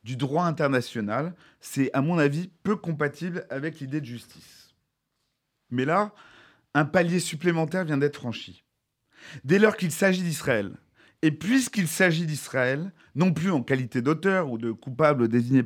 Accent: French